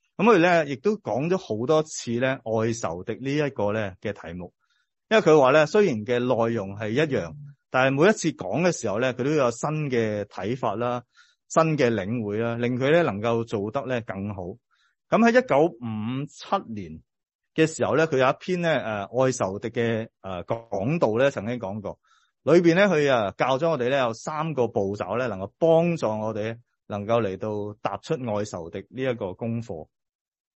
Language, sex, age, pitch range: English, male, 30-49, 110-150 Hz